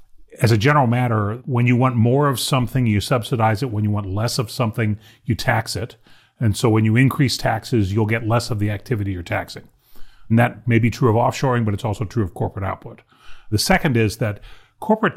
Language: English